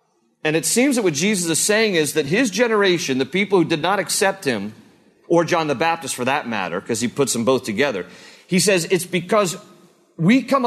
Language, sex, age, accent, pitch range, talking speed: English, male, 40-59, American, 165-225 Hz, 215 wpm